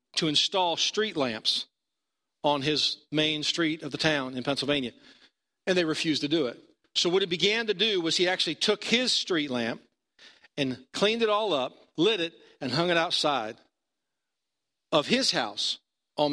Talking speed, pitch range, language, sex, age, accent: 175 wpm, 130-180 Hz, English, male, 50-69, American